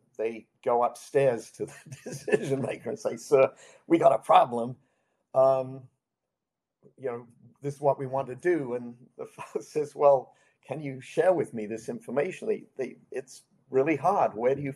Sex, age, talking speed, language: male, 50-69, 180 wpm, English